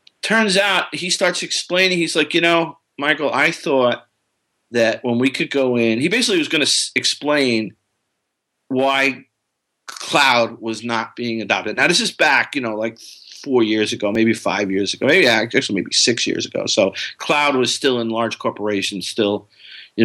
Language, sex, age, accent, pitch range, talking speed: English, male, 40-59, American, 115-170 Hz, 180 wpm